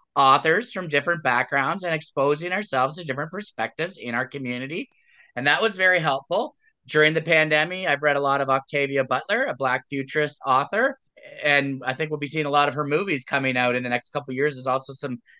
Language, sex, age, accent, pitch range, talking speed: English, male, 30-49, American, 140-170 Hz, 210 wpm